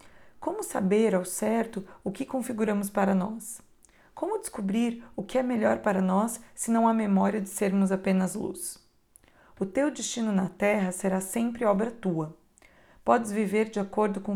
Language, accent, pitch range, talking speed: Portuguese, Brazilian, 195-225 Hz, 165 wpm